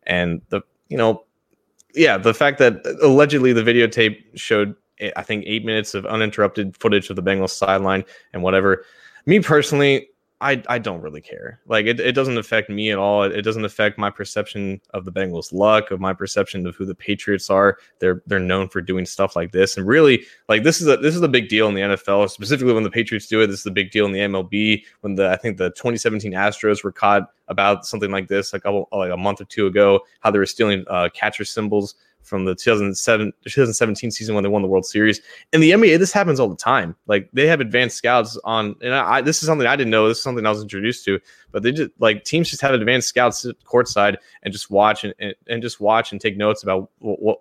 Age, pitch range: 20-39, 95-115 Hz